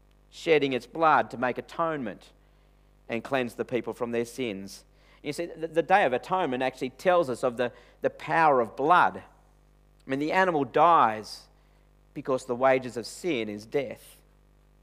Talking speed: 165 wpm